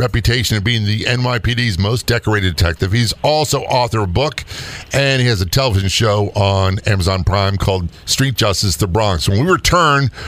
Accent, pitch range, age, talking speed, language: American, 90-125 Hz, 50-69, 180 wpm, English